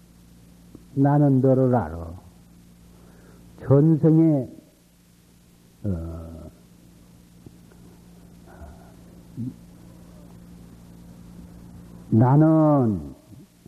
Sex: male